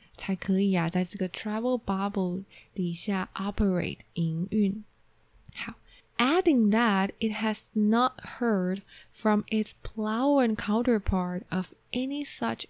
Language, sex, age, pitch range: Chinese, female, 20-39, 175-215 Hz